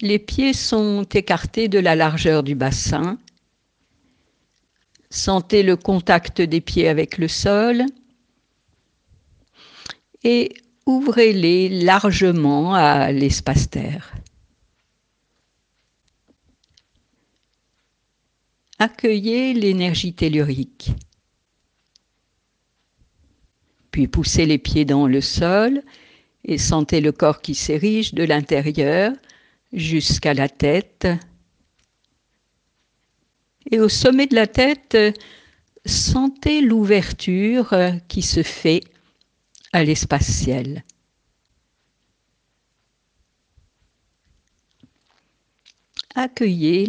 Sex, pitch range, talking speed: female, 150-220 Hz, 75 wpm